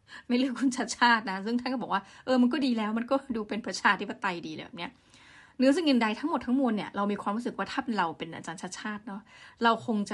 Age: 20-39